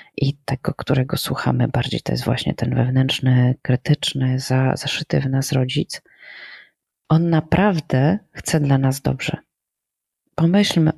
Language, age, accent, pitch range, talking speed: Polish, 30-49, native, 140-165 Hz, 120 wpm